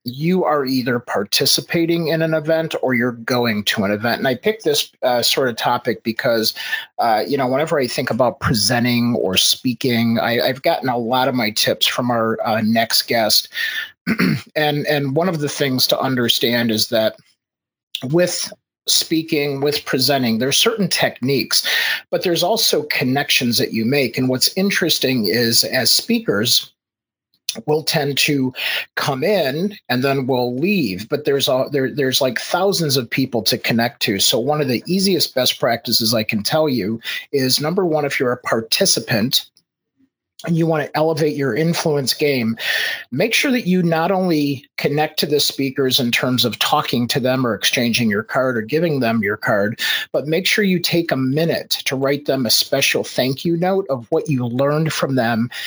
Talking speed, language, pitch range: 180 wpm, English, 120-160 Hz